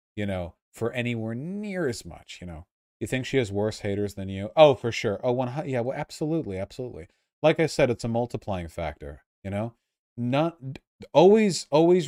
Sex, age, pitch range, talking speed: male, 30-49, 100-135 Hz, 190 wpm